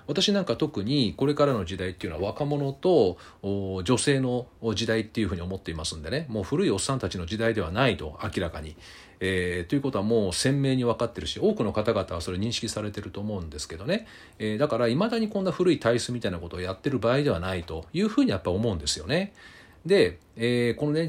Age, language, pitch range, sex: 40-59, Japanese, 95-145 Hz, male